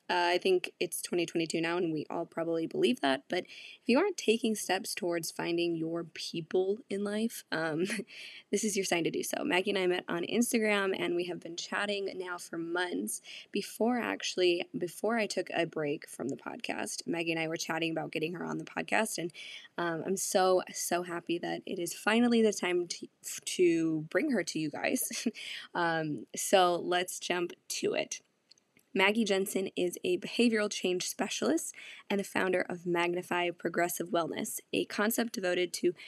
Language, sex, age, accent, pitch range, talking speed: English, female, 10-29, American, 175-215 Hz, 185 wpm